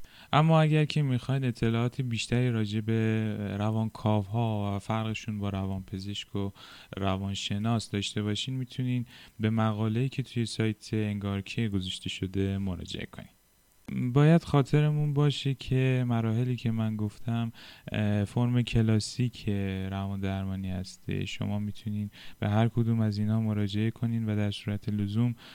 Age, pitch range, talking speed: 10-29, 105-125 Hz, 135 wpm